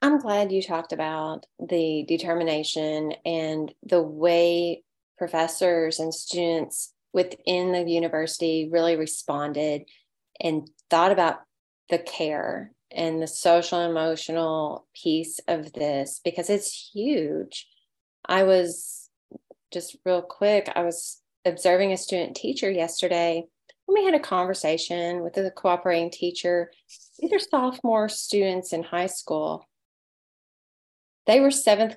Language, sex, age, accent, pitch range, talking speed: English, female, 30-49, American, 165-195 Hz, 120 wpm